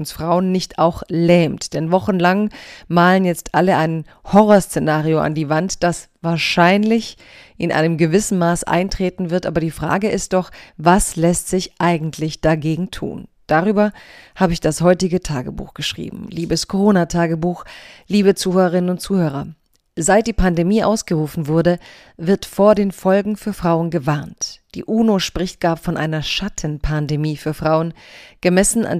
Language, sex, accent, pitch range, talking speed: German, female, German, 165-190 Hz, 145 wpm